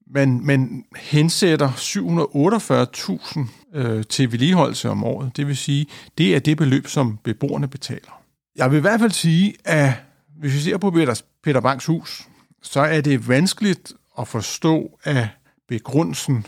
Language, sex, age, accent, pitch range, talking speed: Danish, male, 50-69, native, 120-165 Hz, 150 wpm